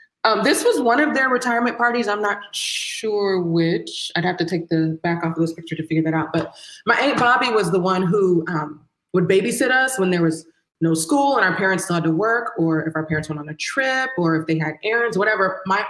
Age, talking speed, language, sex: 20-39, 245 wpm, English, female